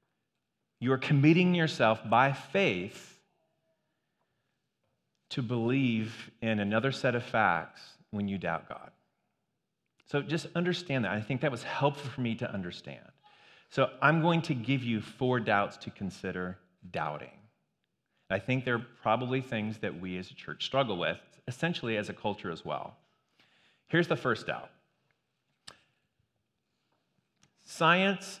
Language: English